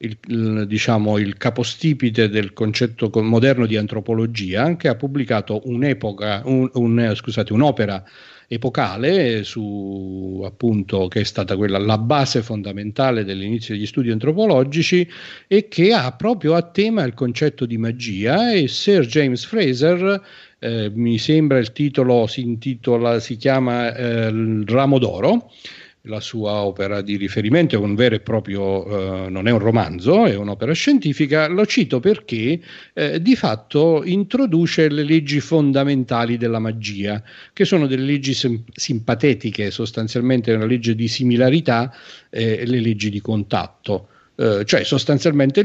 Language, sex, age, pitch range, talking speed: Italian, male, 40-59, 110-145 Hz, 145 wpm